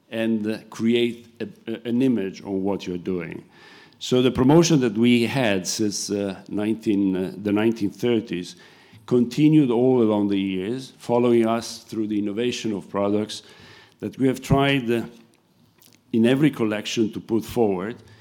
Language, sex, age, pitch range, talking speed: English, male, 50-69, 105-125 Hz, 145 wpm